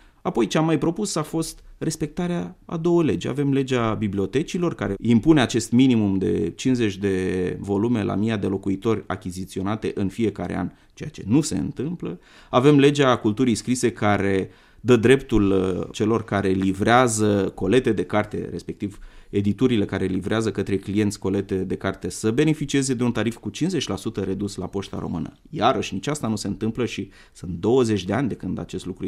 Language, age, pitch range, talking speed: Romanian, 30-49, 100-130 Hz, 170 wpm